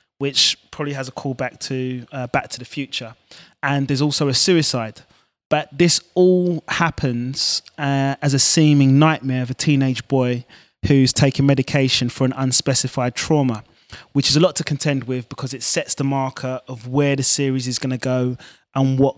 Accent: British